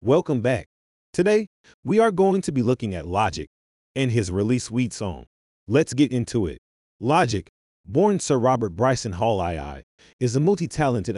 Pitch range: 95-140 Hz